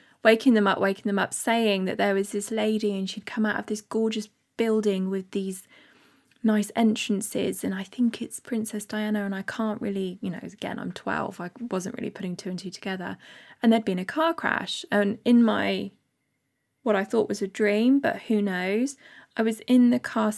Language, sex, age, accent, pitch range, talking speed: English, female, 20-39, British, 190-225 Hz, 205 wpm